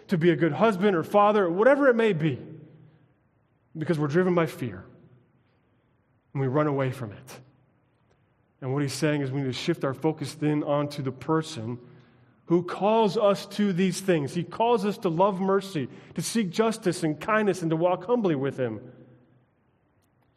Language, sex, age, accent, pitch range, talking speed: English, male, 30-49, American, 120-160 Hz, 180 wpm